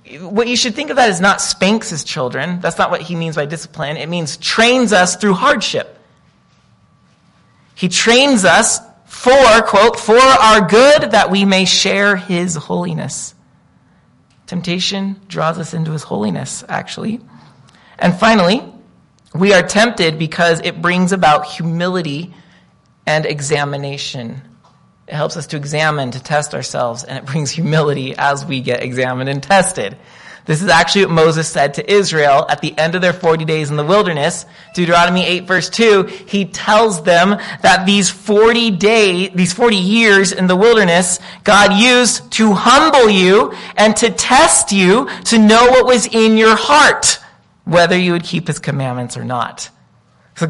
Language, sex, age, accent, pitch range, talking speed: English, male, 30-49, American, 155-205 Hz, 160 wpm